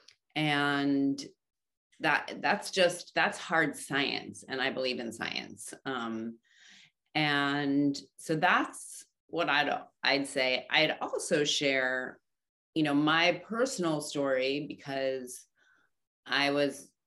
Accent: American